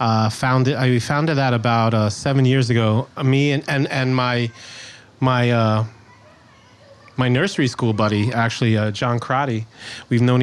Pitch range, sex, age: 115-135 Hz, male, 30-49